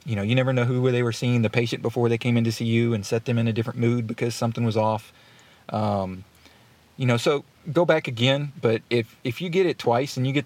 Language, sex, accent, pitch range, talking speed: English, male, American, 110-125 Hz, 265 wpm